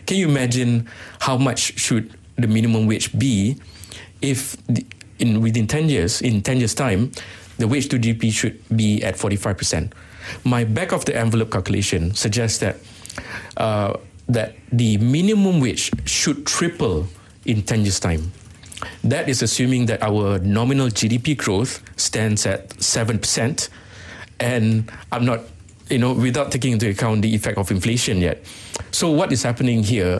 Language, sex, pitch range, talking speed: English, male, 100-120 Hz, 155 wpm